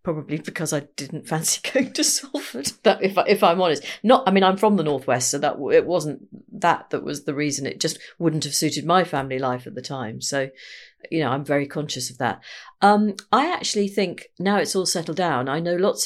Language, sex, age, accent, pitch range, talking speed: English, female, 40-59, British, 150-185 Hz, 220 wpm